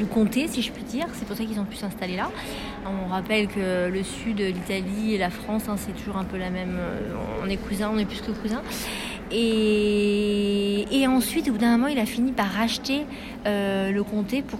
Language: French